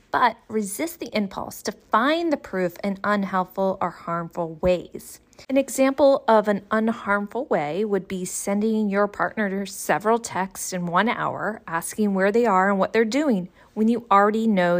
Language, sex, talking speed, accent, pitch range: English, female, 165 wpm, American, 190-255 Hz